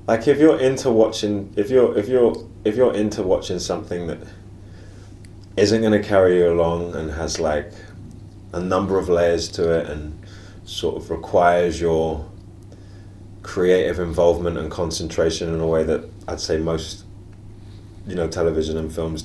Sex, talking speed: male, 160 wpm